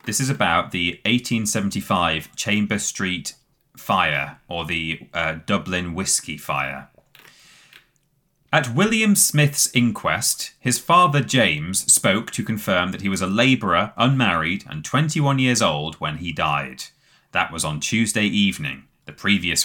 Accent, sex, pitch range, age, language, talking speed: British, male, 85-130 Hz, 30-49, English, 135 wpm